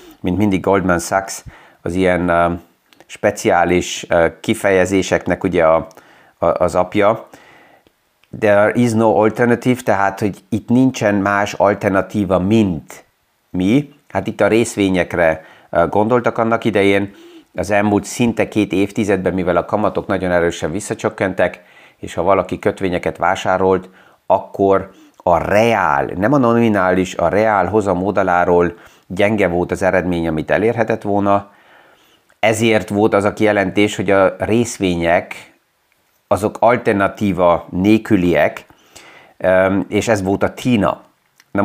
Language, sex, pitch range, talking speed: Hungarian, male, 95-110 Hz, 110 wpm